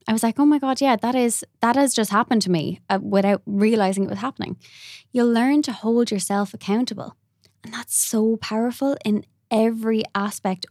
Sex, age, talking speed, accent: female, 20-39, 190 wpm, Irish